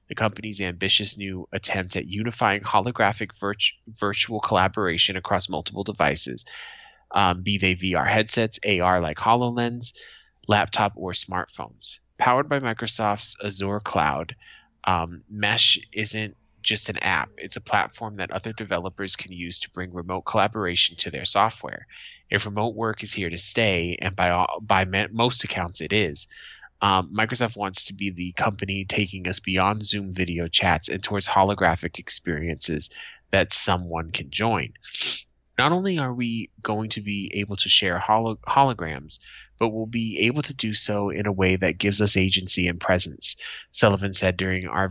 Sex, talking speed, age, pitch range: male, 155 wpm, 20-39, 95-110 Hz